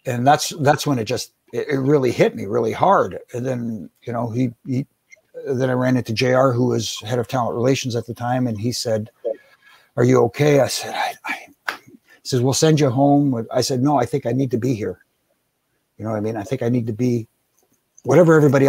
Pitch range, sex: 115-135 Hz, male